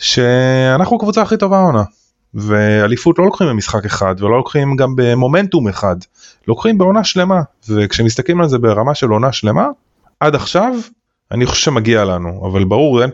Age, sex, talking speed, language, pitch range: 20-39, male, 155 wpm, Hebrew, 95-125 Hz